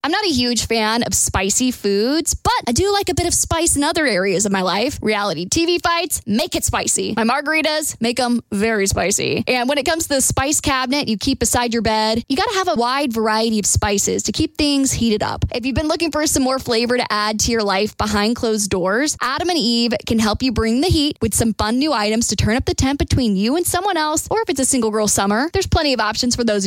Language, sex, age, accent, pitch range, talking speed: English, female, 20-39, American, 225-305 Hz, 255 wpm